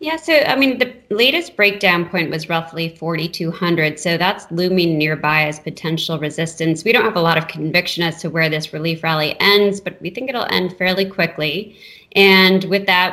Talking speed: 190 wpm